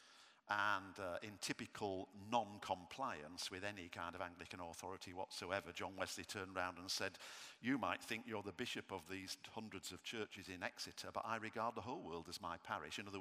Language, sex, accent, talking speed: English, male, British, 195 wpm